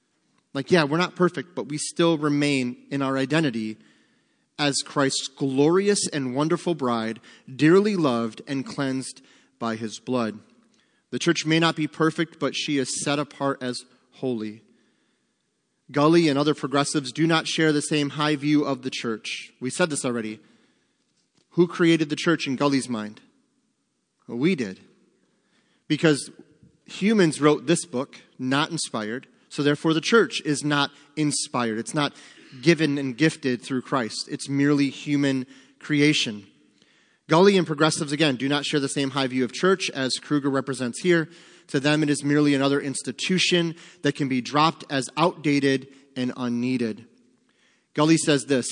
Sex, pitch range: male, 130-155 Hz